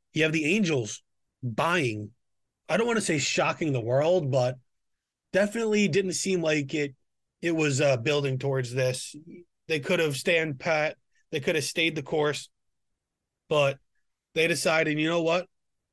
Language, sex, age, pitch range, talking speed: English, male, 30-49, 135-165 Hz, 155 wpm